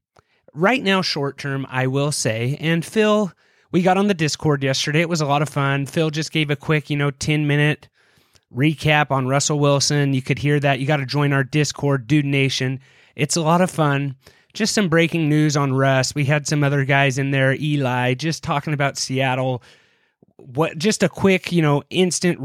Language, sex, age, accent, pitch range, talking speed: English, male, 30-49, American, 135-160 Hz, 200 wpm